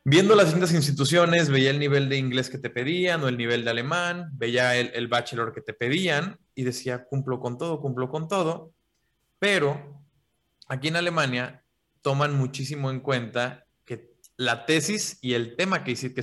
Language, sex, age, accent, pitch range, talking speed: Spanish, male, 20-39, Mexican, 120-150 Hz, 175 wpm